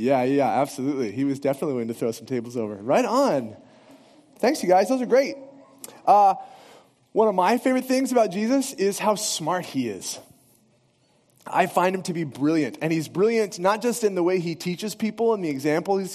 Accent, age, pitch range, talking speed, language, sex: American, 30-49, 150-220 Hz, 195 wpm, English, male